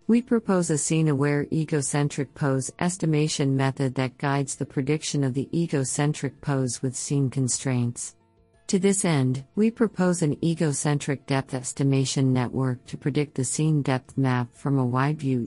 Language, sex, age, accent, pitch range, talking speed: English, female, 50-69, American, 130-155 Hz, 145 wpm